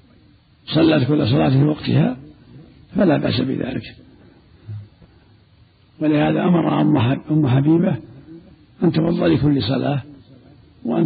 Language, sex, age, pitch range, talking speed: Arabic, male, 60-79, 110-155 Hz, 90 wpm